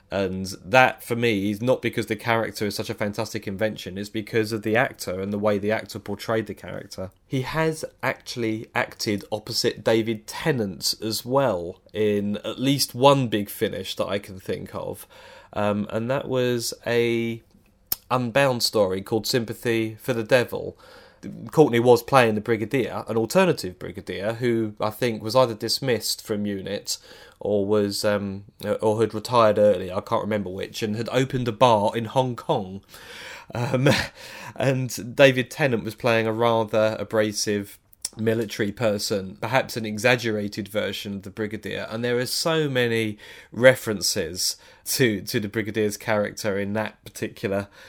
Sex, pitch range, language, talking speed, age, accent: male, 105-120 Hz, English, 160 wpm, 30-49, British